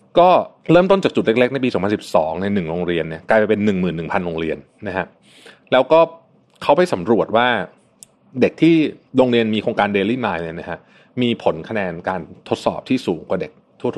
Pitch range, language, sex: 95-145 Hz, Thai, male